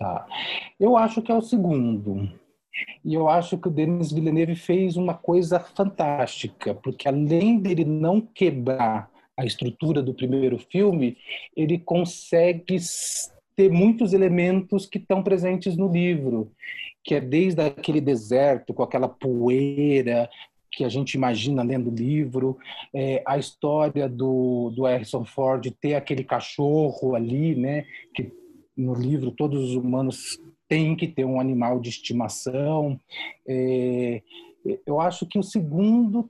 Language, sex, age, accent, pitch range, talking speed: Portuguese, male, 40-59, Brazilian, 130-185 Hz, 135 wpm